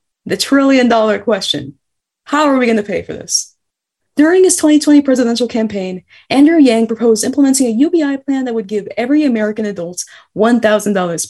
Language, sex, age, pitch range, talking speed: English, female, 20-39, 215-275 Hz, 160 wpm